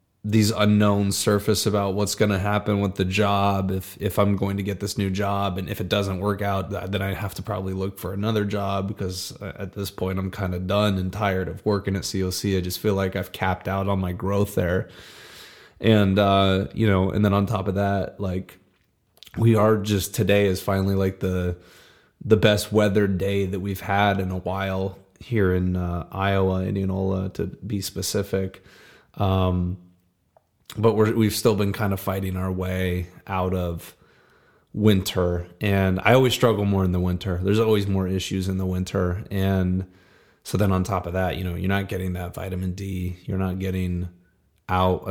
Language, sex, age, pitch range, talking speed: English, male, 20-39, 95-100 Hz, 195 wpm